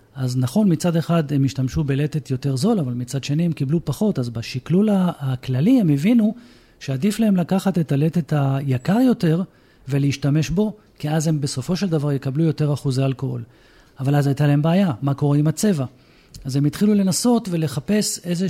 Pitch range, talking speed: 140-190 Hz, 175 wpm